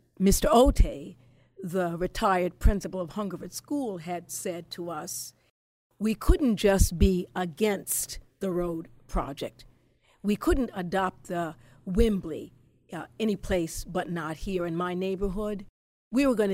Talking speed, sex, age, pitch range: 135 wpm, female, 50-69, 170-220 Hz